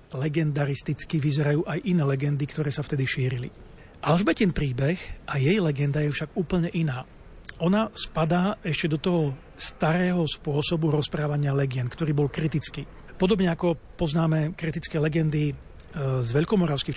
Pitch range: 145-170 Hz